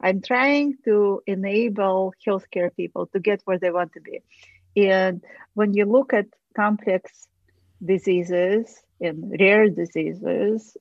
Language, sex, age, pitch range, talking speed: English, female, 40-59, 185-230 Hz, 130 wpm